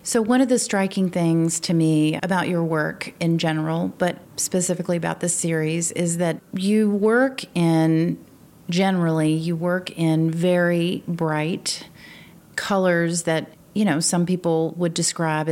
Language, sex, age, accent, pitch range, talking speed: English, female, 40-59, American, 160-180 Hz, 145 wpm